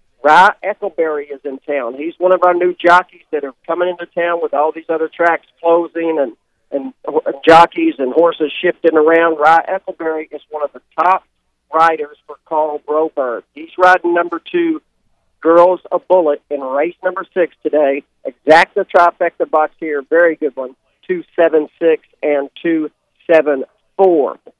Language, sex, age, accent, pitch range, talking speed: English, male, 50-69, American, 150-175 Hz, 155 wpm